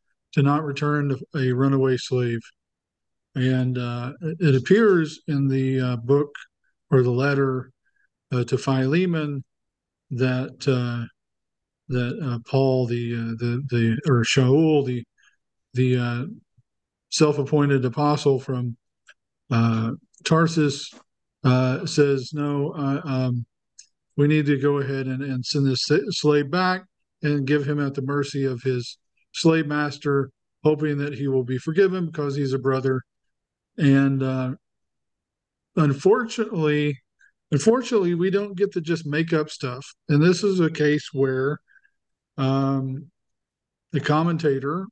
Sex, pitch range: male, 130-155 Hz